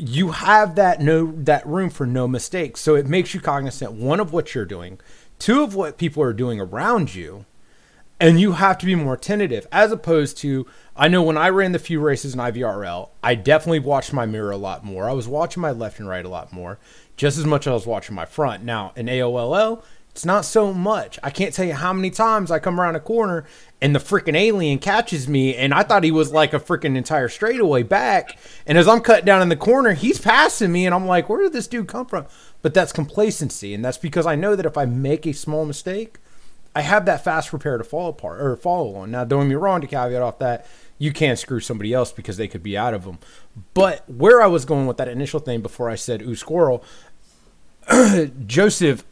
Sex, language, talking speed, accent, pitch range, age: male, English, 235 wpm, American, 125-185 Hz, 30-49